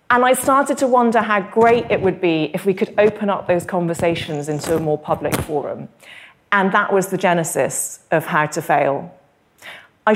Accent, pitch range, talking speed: British, 165-210 Hz, 190 wpm